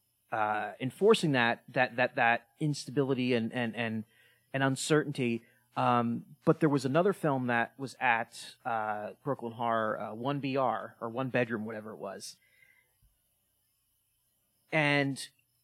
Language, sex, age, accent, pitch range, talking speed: English, male, 30-49, American, 120-155 Hz, 130 wpm